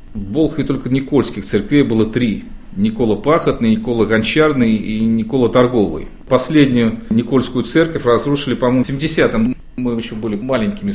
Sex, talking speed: male, 135 wpm